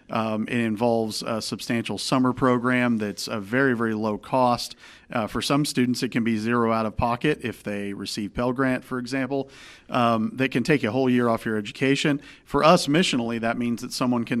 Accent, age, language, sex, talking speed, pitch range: American, 40-59, English, male, 205 wpm, 115-135 Hz